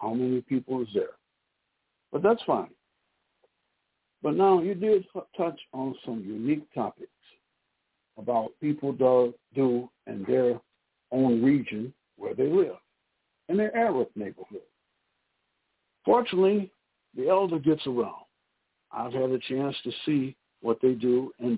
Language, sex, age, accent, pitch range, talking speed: English, male, 60-79, American, 125-200 Hz, 130 wpm